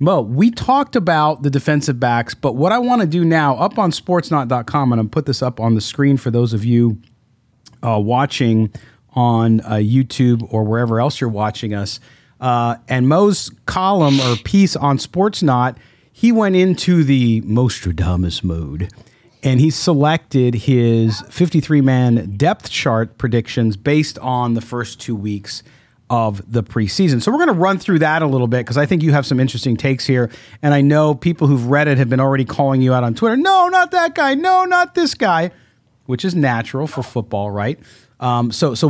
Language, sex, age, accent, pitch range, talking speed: English, male, 40-59, American, 115-150 Hz, 190 wpm